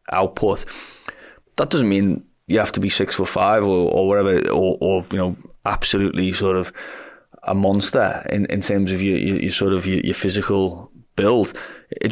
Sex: male